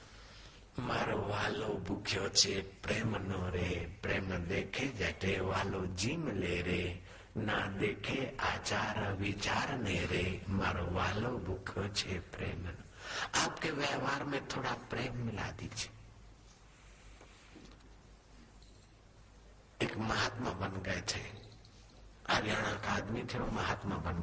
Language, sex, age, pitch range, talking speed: Hindi, male, 60-79, 100-115 Hz, 100 wpm